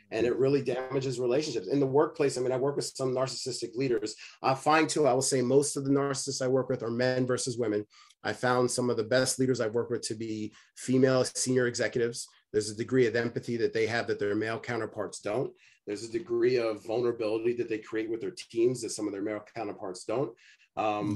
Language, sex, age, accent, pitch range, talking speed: English, male, 30-49, American, 120-140 Hz, 225 wpm